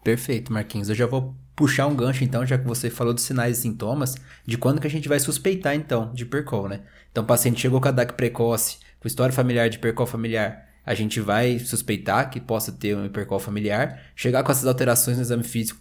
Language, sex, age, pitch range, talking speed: Portuguese, male, 20-39, 105-130 Hz, 225 wpm